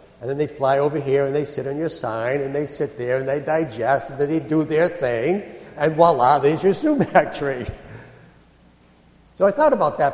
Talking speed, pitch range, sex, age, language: 215 wpm, 145-200 Hz, male, 50-69, English